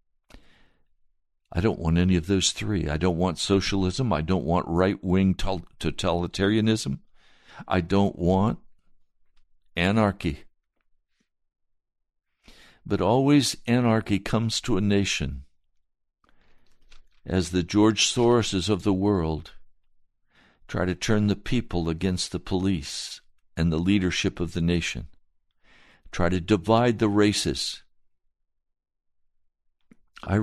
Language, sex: English, male